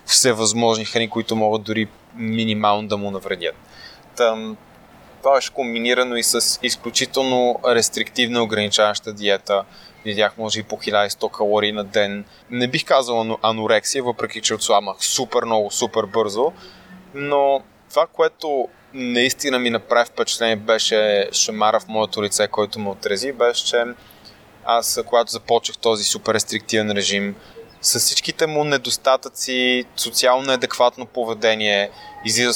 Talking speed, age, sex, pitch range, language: 130 wpm, 20-39, male, 110-125 Hz, Bulgarian